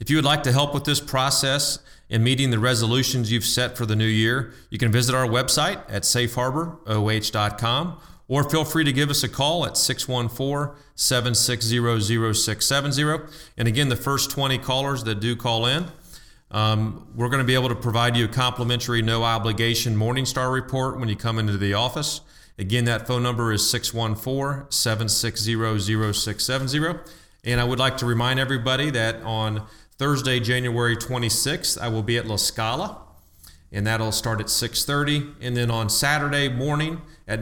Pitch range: 115-135 Hz